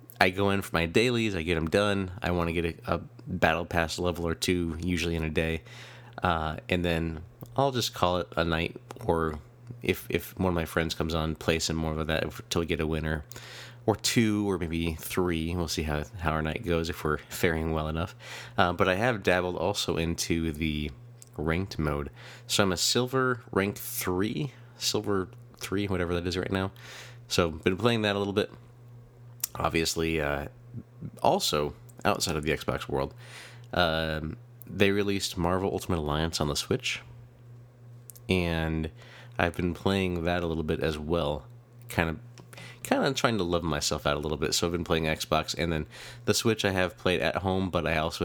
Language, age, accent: English, 30-49, American